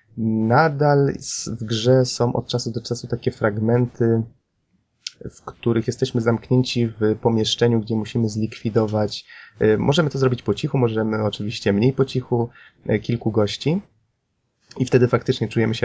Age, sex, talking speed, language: 20-39, male, 135 wpm, Polish